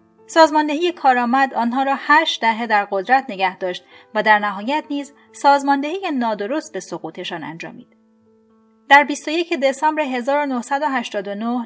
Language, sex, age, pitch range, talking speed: Persian, female, 30-49, 215-295 Hz, 120 wpm